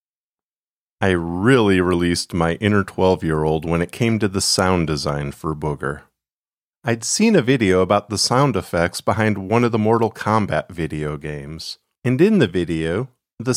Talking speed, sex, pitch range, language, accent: 160 wpm, male, 85-115 Hz, English, American